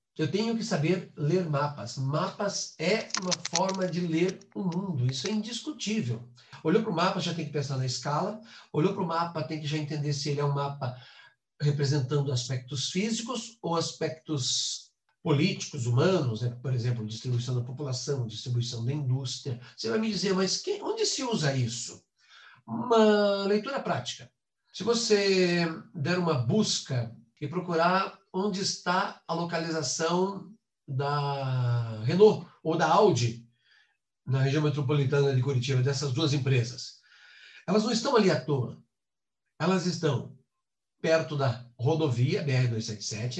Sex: male